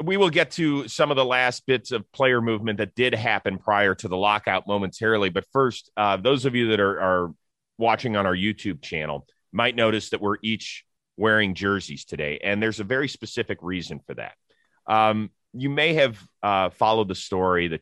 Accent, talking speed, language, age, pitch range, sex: American, 200 wpm, English, 30-49, 85-110 Hz, male